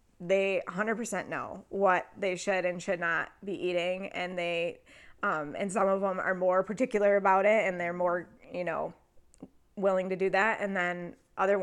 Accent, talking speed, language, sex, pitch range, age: American, 180 wpm, English, female, 195-240 Hz, 20-39